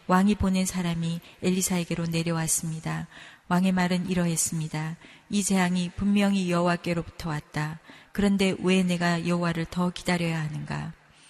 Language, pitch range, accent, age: Korean, 165-195 Hz, native, 40-59